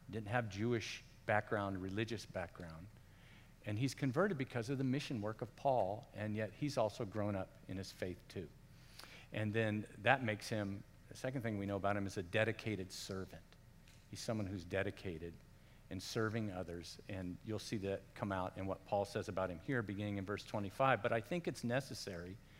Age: 50-69